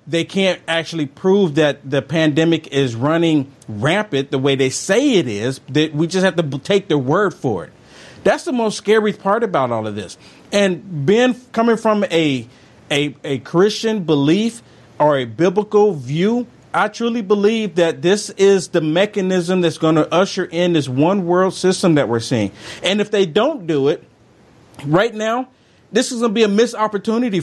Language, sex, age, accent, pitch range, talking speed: English, male, 40-59, American, 145-205 Hz, 185 wpm